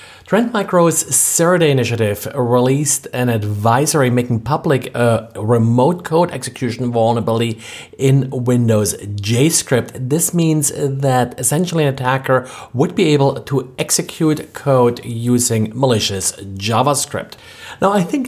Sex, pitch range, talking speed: male, 115-140 Hz, 115 wpm